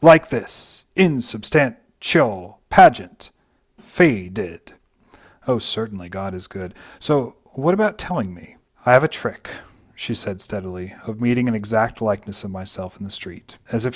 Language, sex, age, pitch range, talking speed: English, male, 40-59, 95-135 Hz, 145 wpm